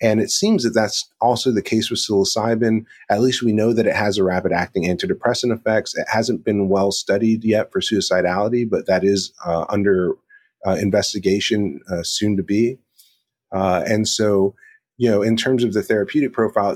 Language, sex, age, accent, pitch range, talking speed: English, male, 30-49, American, 95-110 Hz, 185 wpm